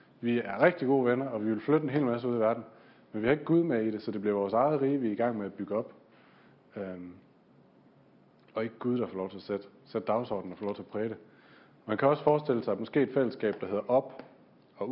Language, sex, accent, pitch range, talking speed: Danish, male, native, 105-135 Hz, 275 wpm